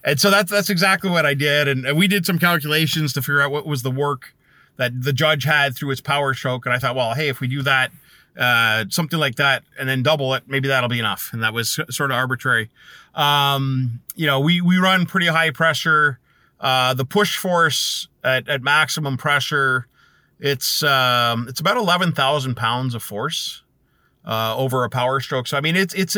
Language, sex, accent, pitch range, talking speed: English, male, American, 125-155 Hz, 210 wpm